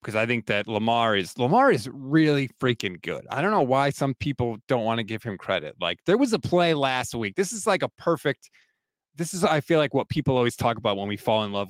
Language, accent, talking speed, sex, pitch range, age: English, American, 255 wpm, male, 125-195 Hz, 30-49